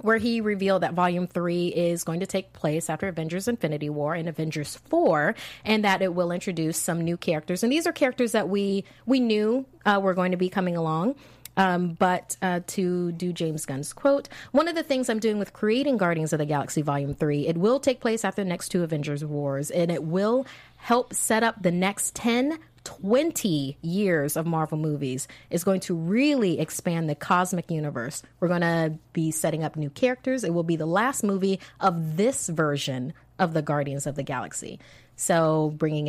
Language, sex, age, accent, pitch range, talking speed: English, female, 30-49, American, 150-200 Hz, 200 wpm